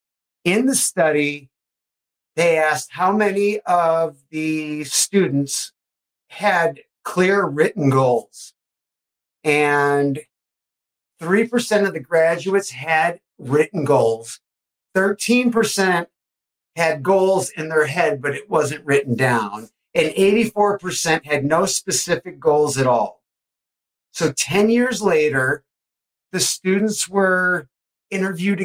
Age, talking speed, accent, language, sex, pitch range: 50-69, 105 wpm, American, English, male, 145-200 Hz